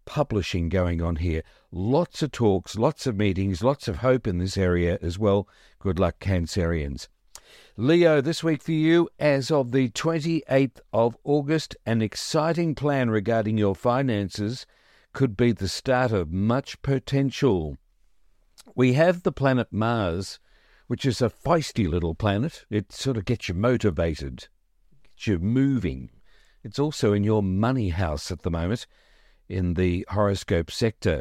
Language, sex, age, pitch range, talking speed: English, male, 50-69, 95-135 Hz, 150 wpm